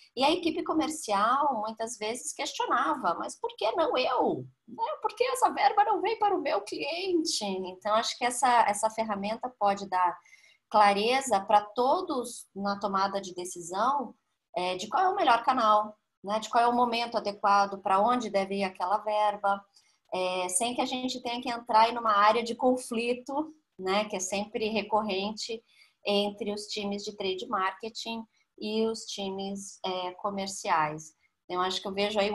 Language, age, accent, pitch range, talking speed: Portuguese, 20-39, Brazilian, 190-245 Hz, 165 wpm